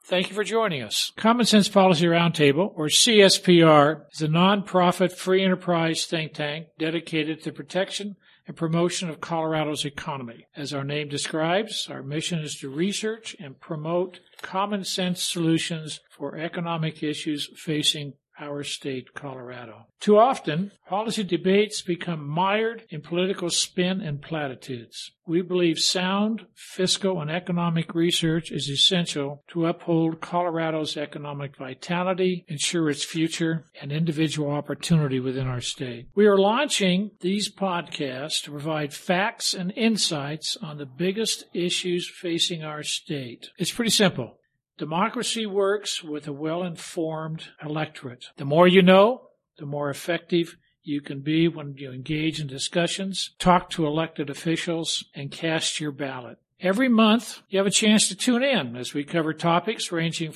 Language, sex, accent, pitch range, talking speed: English, male, American, 150-190 Hz, 145 wpm